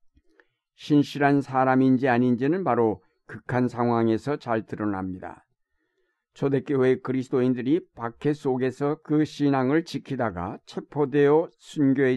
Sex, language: male, Korean